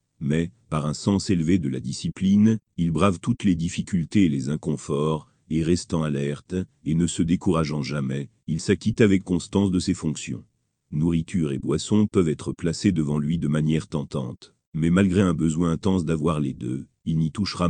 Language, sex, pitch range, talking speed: French, male, 80-95 Hz, 180 wpm